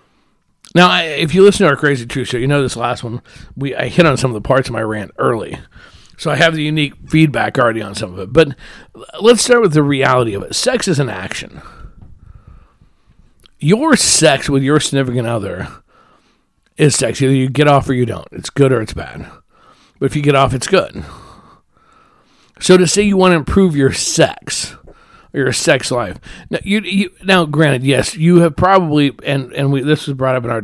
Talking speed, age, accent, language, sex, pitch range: 210 wpm, 50-69, American, English, male, 120-160 Hz